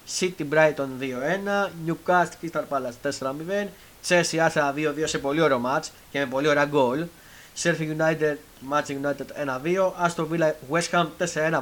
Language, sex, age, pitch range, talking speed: Greek, male, 30-49, 140-185 Hz, 150 wpm